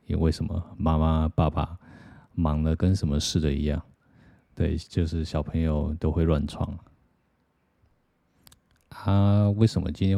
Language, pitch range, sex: Chinese, 80-95 Hz, male